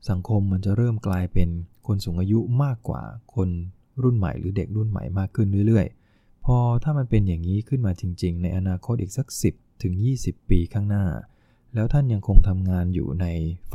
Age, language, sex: 20-39, English, male